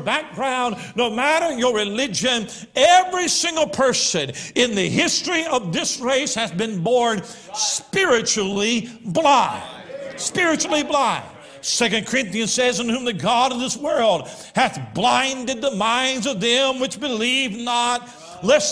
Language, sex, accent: English, male, American